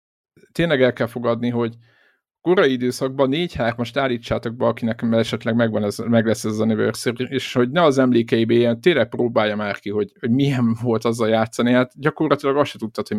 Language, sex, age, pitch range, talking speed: Hungarian, male, 50-69, 110-130 Hz, 180 wpm